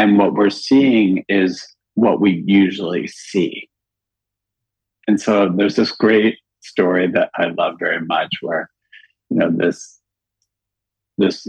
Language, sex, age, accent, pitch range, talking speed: English, male, 50-69, American, 95-105 Hz, 130 wpm